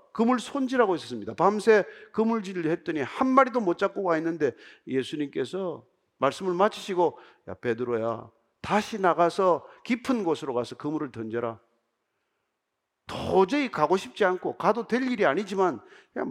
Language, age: Korean, 40-59